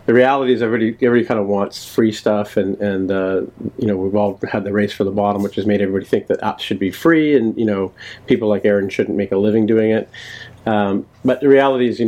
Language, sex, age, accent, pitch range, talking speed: English, male, 40-59, American, 100-120 Hz, 255 wpm